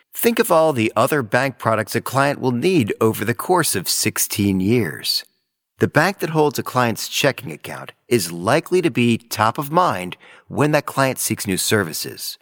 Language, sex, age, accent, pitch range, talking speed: English, male, 40-59, American, 105-145 Hz, 185 wpm